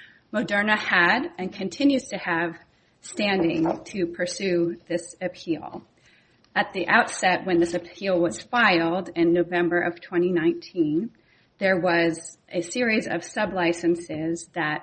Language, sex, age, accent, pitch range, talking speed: English, female, 30-49, American, 165-190 Hz, 120 wpm